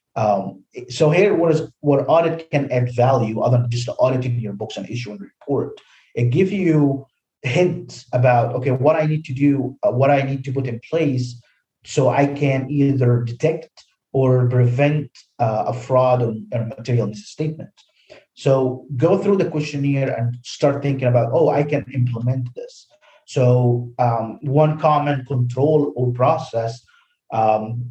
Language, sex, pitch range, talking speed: English, male, 120-150 Hz, 160 wpm